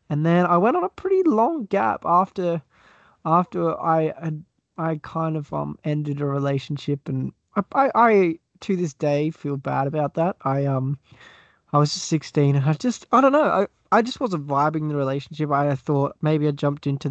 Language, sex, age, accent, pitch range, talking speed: English, male, 20-39, Australian, 140-175 Hz, 195 wpm